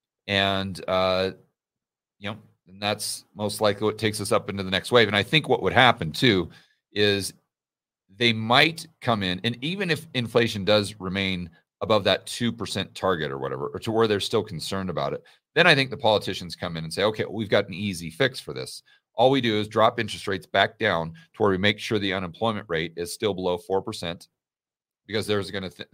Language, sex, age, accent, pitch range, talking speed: English, male, 40-59, American, 95-120 Hz, 210 wpm